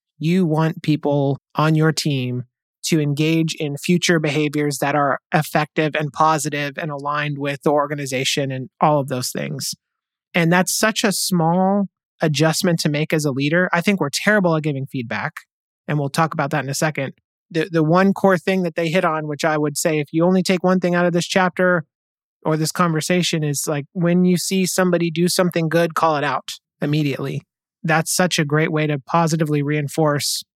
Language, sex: English, male